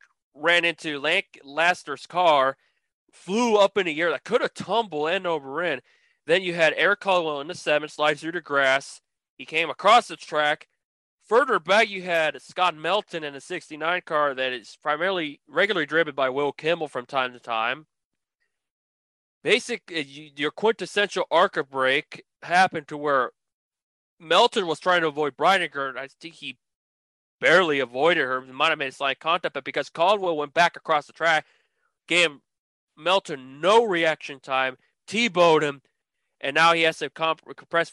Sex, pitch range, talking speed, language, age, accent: male, 135-170 Hz, 165 wpm, English, 20-39, American